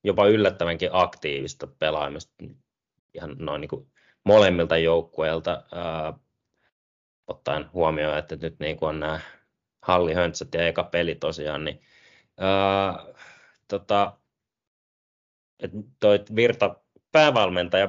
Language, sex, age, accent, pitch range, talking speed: Finnish, male, 20-39, native, 80-95 Hz, 95 wpm